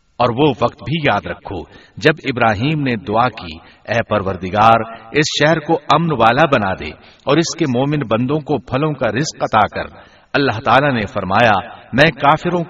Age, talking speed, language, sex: 60-79, 175 wpm, Urdu, male